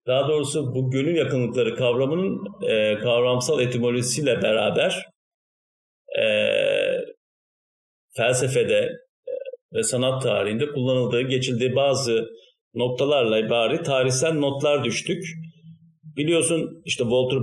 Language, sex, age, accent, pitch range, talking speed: Turkish, male, 50-69, native, 120-195 Hz, 90 wpm